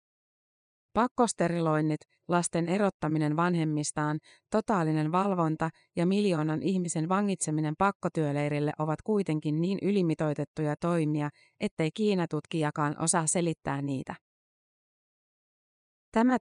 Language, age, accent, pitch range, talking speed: Finnish, 30-49, native, 155-190 Hz, 80 wpm